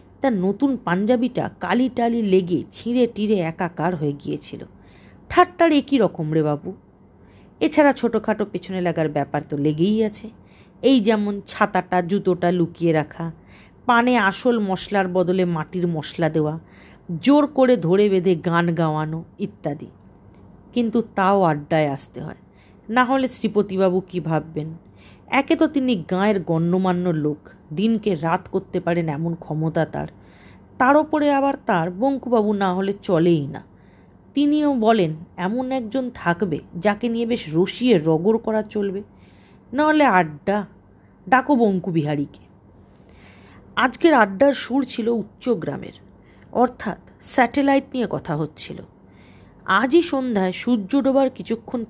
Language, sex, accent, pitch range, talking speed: Bengali, female, native, 165-240 Hz, 125 wpm